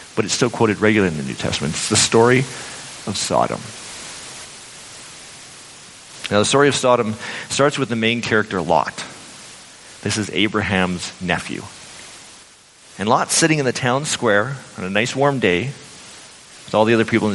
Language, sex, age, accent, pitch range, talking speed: English, male, 40-59, American, 105-135 Hz, 165 wpm